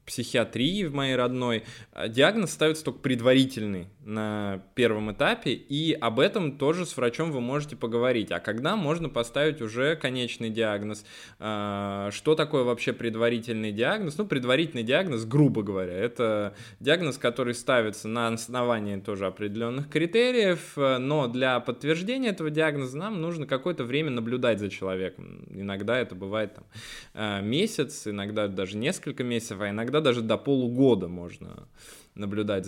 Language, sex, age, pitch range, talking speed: Russian, male, 20-39, 105-135 Hz, 135 wpm